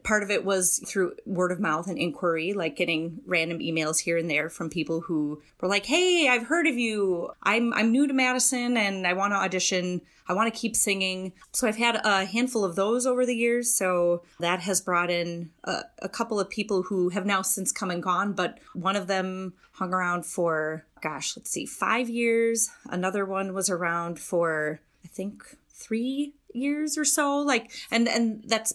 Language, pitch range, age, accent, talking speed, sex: English, 180-230 Hz, 30-49, American, 200 wpm, female